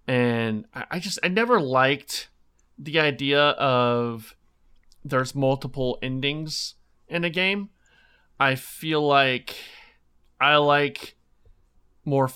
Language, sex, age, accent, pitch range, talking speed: English, male, 30-49, American, 115-140 Hz, 100 wpm